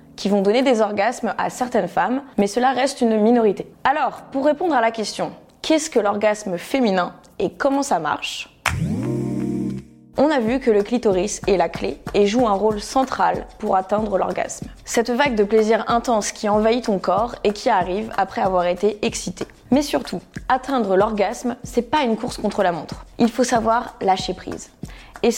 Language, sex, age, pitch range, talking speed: French, female, 20-39, 185-240 Hz, 180 wpm